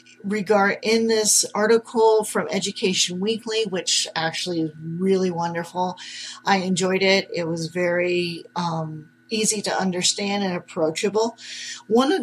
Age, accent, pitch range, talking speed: 40-59, American, 175-220 Hz, 130 wpm